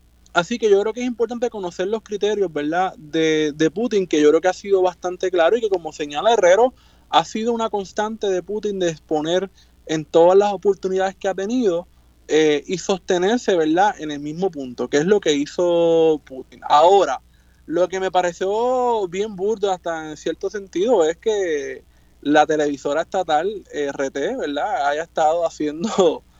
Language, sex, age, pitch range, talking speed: Spanish, male, 20-39, 150-205 Hz, 175 wpm